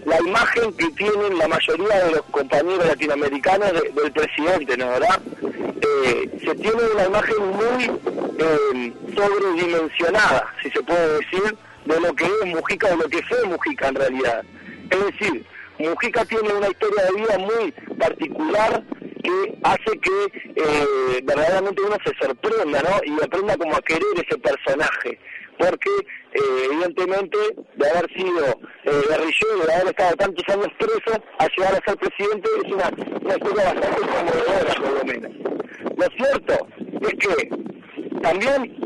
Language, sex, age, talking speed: Portuguese, male, 50-69, 150 wpm